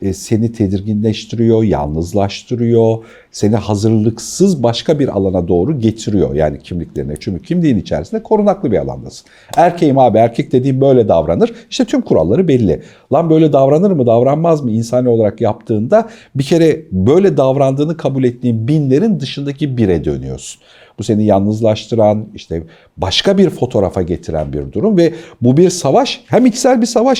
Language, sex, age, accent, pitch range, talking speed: Turkish, male, 50-69, native, 110-160 Hz, 145 wpm